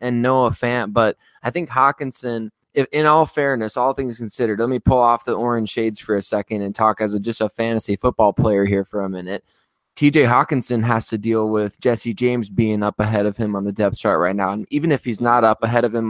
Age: 20-39